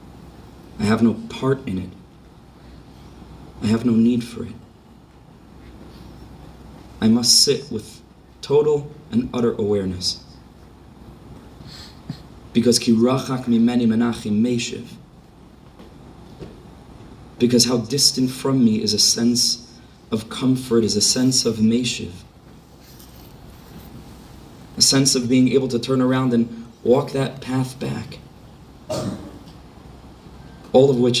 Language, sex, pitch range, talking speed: English, male, 110-130 Hz, 110 wpm